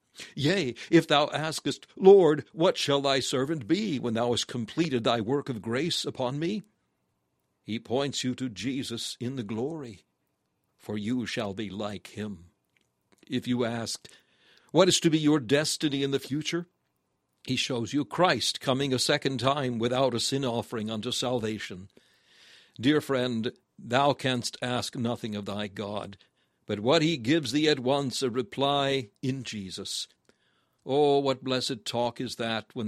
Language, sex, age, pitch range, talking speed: English, male, 60-79, 110-140 Hz, 160 wpm